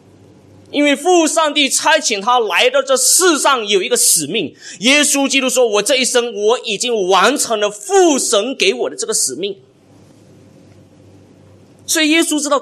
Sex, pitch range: male, 180-260 Hz